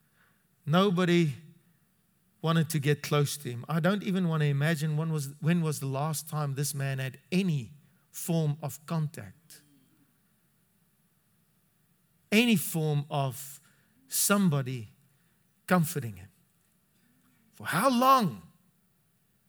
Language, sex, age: English, male, 40-59